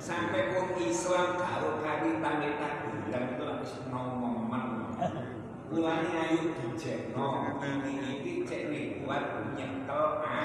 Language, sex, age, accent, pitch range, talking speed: Indonesian, male, 60-79, native, 130-160 Hz, 130 wpm